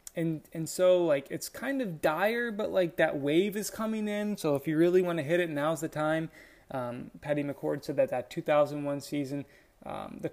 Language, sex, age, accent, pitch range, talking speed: English, male, 20-39, American, 145-200 Hz, 210 wpm